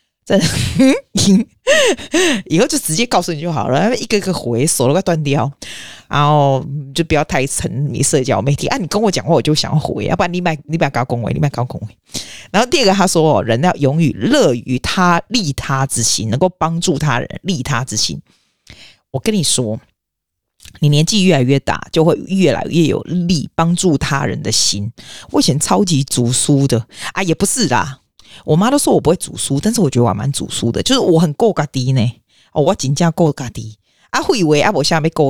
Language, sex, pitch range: Chinese, female, 130-175 Hz